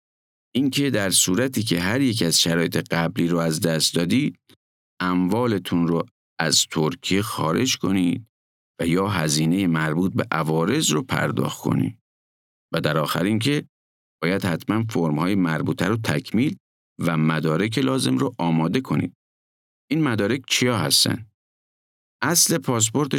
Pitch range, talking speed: 85-120 Hz, 130 wpm